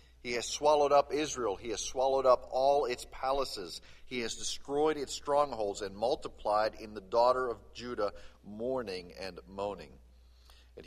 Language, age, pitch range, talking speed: English, 40-59, 95-130 Hz, 155 wpm